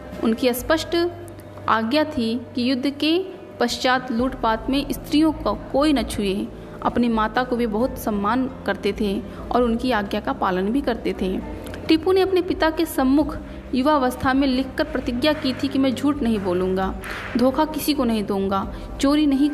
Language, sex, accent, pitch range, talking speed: Hindi, female, native, 225-285 Hz, 175 wpm